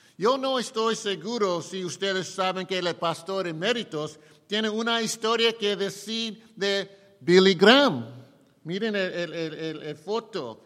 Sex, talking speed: male, 145 wpm